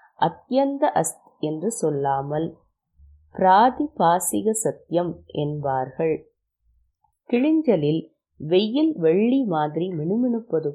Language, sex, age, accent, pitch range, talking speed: Tamil, female, 20-39, native, 165-230 Hz, 65 wpm